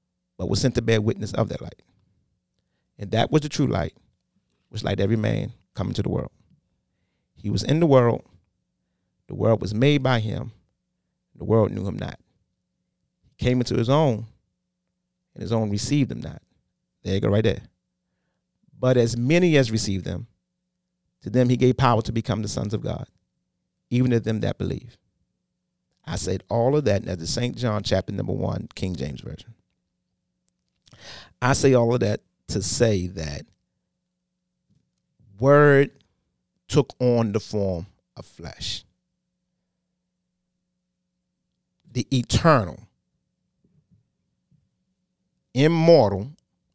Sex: male